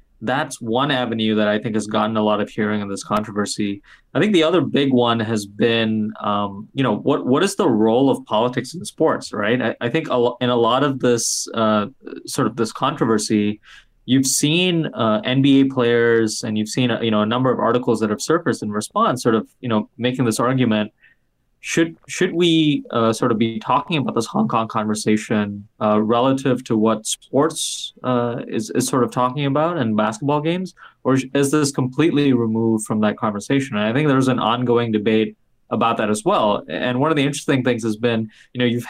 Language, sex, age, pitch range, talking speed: English, male, 20-39, 110-130 Hz, 210 wpm